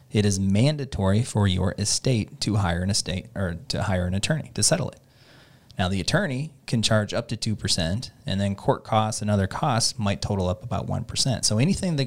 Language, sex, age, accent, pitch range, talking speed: English, male, 30-49, American, 100-125 Hz, 205 wpm